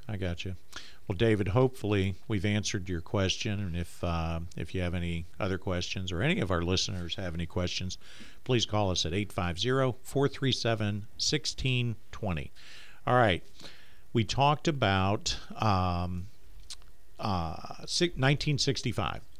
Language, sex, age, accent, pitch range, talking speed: English, male, 50-69, American, 85-115 Hz, 125 wpm